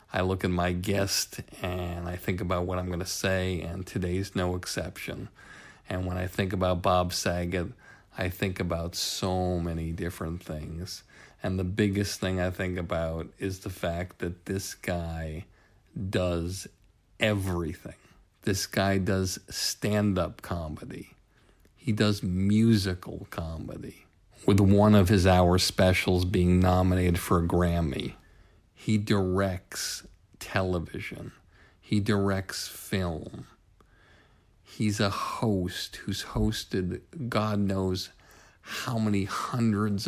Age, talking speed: 50-69, 125 wpm